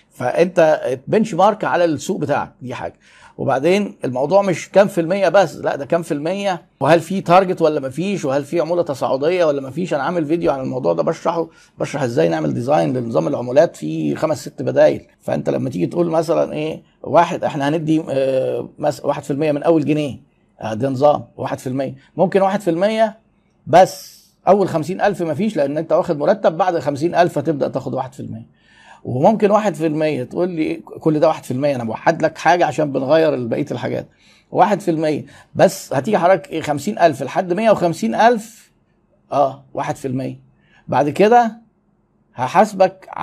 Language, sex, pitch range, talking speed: Arabic, male, 150-195 Hz, 170 wpm